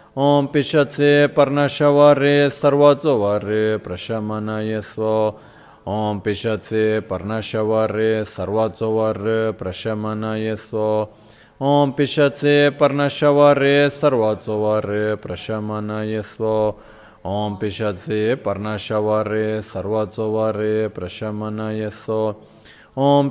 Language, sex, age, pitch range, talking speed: Italian, male, 30-49, 105-145 Hz, 65 wpm